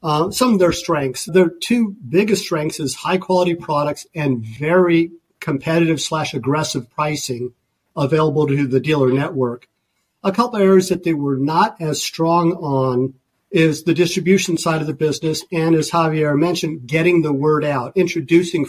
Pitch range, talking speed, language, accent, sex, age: 145-175 Hz, 165 wpm, English, American, male, 50-69